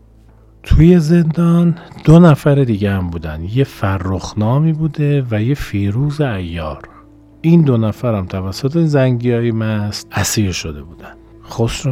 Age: 40-59